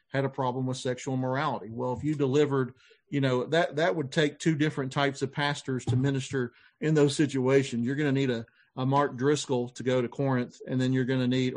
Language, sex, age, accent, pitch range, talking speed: English, male, 40-59, American, 125-150 Hz, 230 wpm